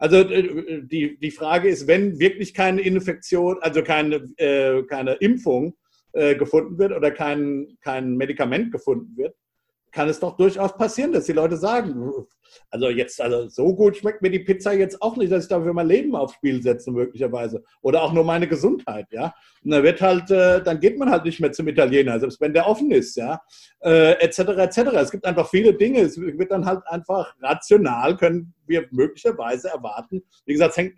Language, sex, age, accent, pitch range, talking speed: German, male, 50-69, German, 150-190 Hz, 195 wpm